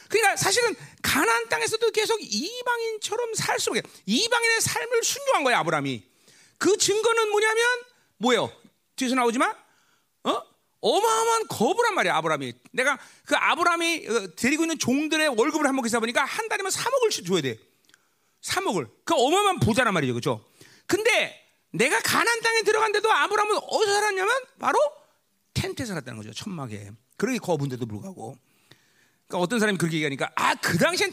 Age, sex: 40-59, male